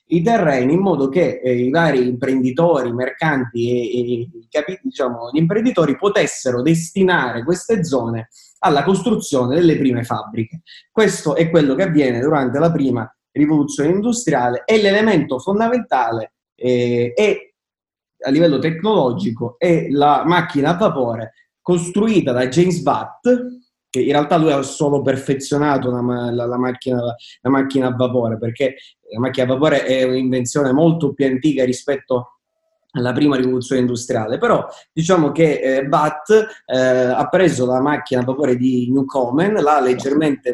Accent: native